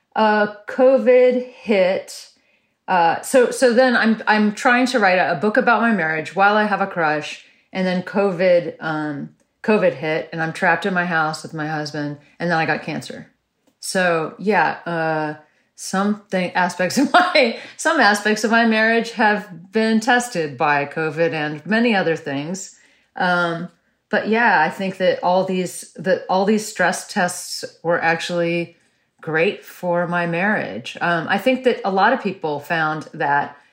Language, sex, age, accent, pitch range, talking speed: English, female, 30-49, American, 155-200 Hz, 165 wpm